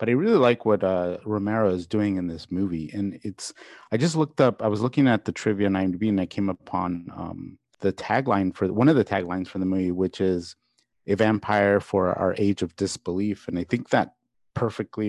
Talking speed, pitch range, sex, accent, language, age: 210 wpm, 95-115 Hz, male, American, English, 30-49